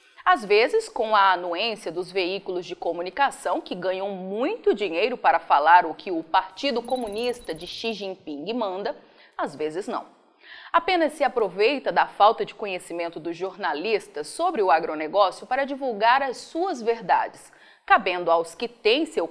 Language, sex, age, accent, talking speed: Portuguese, female, 30-49, Brazilian, 150 wpm